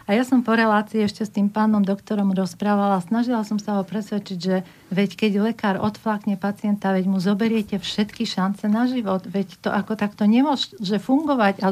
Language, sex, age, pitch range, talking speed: Slovak, female, 50-69, 190-215 Hz, 185 wpm